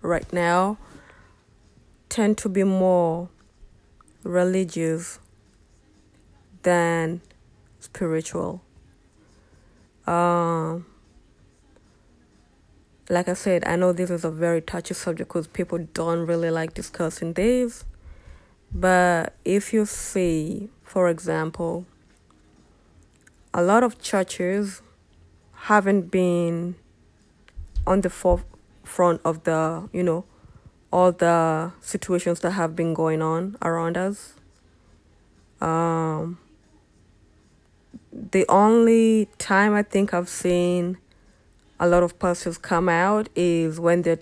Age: 20-39